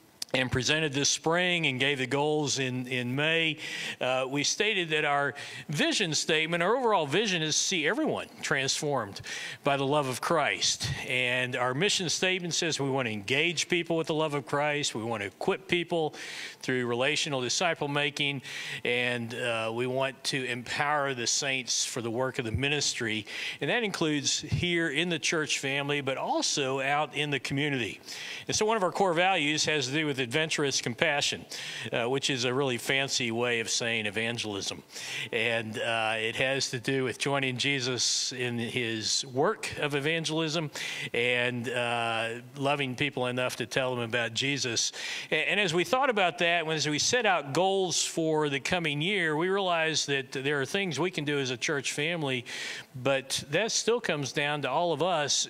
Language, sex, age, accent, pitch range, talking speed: English, male, 50-69, American, 125-155 Hz, 185 wpm